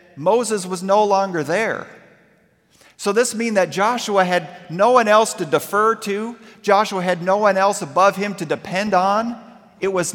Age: 40-59